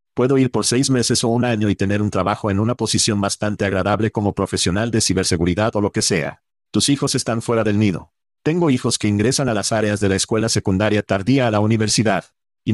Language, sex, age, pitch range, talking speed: Spanish, male, 40-59, 100-125 Hz, 220 wpm